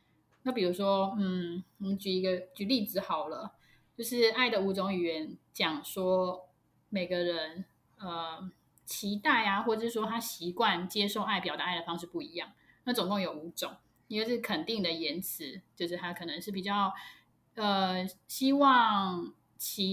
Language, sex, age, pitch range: Chinese, female, 20-39, 180-225 Hz